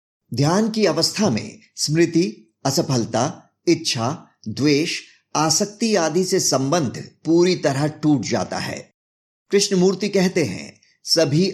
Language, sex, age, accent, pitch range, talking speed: Hindi, male, 50-69, native, 140-180 Hz, 110 wpm